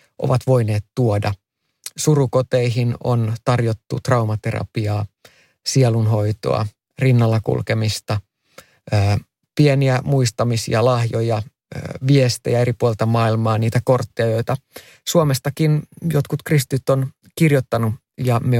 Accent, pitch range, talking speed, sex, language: native, 110-140 Hz, 85 wpm, male, Finnish